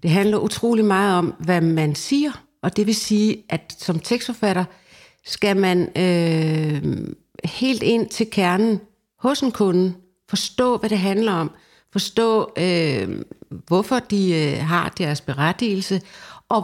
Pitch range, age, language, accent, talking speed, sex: 180-225 Hz, 60-79, Danish, native, 130 wpm, female